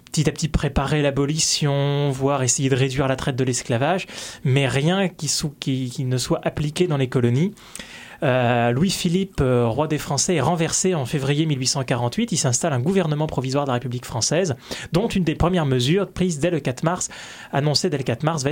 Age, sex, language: 20-39, male, French